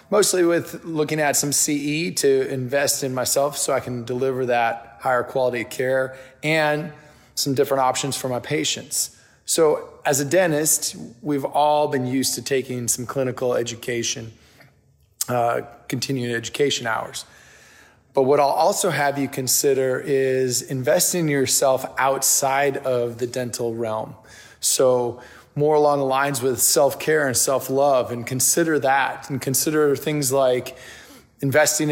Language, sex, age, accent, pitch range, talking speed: English, male, 20-39, American, 130-145 Hz, 145 wpm